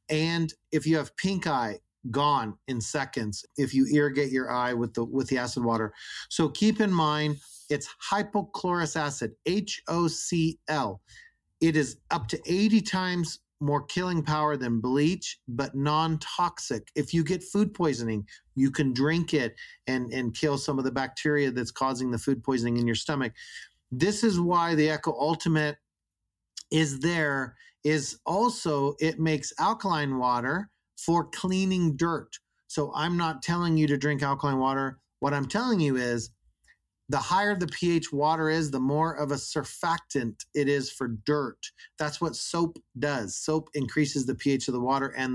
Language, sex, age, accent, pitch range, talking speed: English, male, 40-59, American, 130-165 Hz, 165 wpm